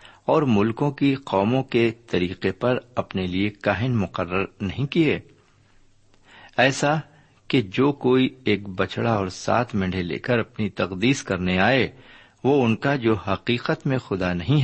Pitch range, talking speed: 95-135 Hz, 150 wpm